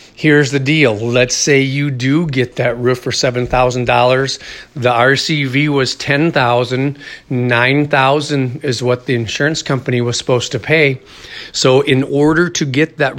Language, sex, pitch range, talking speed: English, male, 125-145 Hz, 145 wpm